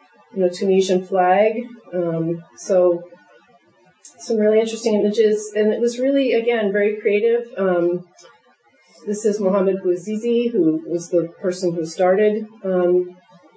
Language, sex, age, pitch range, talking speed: English, female, 40-59, 175-220 Hz, 125 wpm